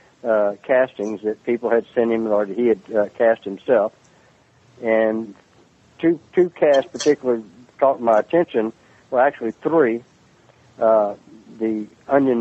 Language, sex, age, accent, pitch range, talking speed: English, male, 60-79, American, 105-120 Hz, 130 wpm